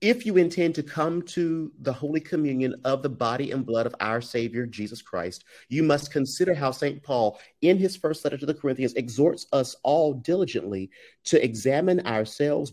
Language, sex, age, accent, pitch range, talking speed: English, male, 40-59, American, 115-150 Hz, 185 wpm